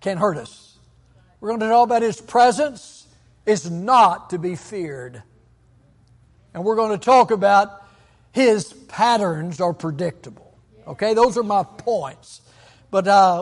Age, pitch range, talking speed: 60-79, 165-220 Hz, 145 wpm